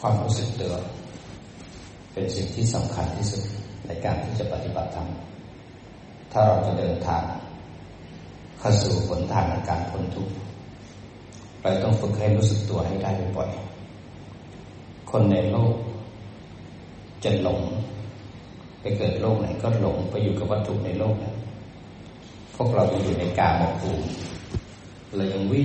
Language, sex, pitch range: Thai, male, 95-110 Hz